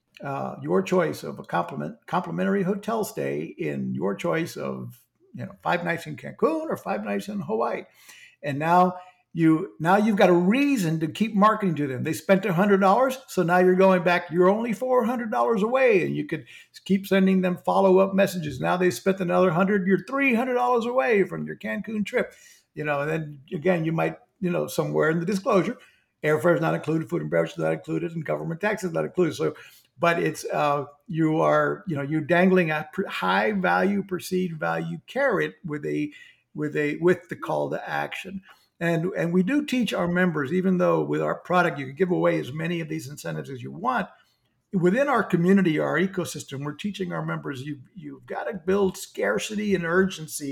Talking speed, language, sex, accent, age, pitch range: 205 wpm, English, male, American, 60-79, 155-195 Hz